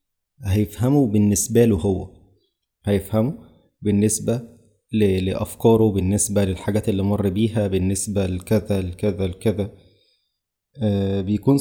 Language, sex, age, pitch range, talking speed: Arabic, male, 20-39, 100-120 Hz, 90 wpm